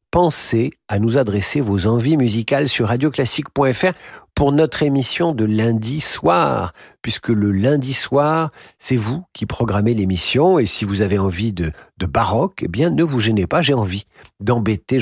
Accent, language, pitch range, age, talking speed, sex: French, French, 105-150 Hz, 50-69, 165 wpm, male